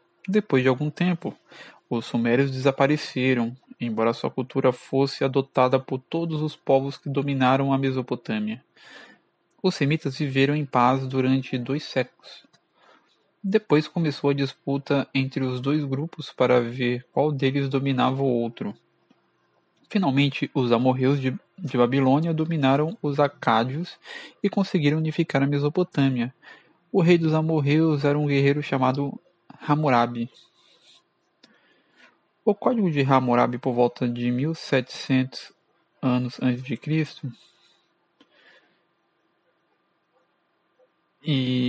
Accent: Brazilian